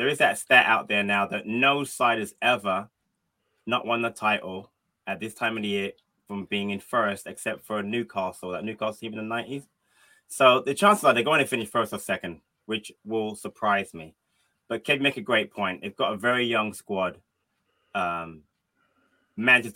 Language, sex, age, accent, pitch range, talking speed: English, male, 20-39, British, 100-120 Hz, 195 wpm